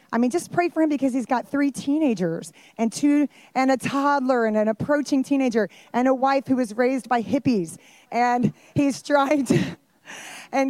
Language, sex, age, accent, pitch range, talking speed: English, female, 30-49, American, 190-240 Hz, 180 wpm